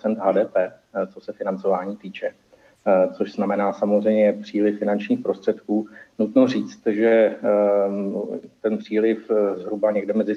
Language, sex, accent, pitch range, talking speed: Czech, male, native, 100-110 Hz, 110 wpm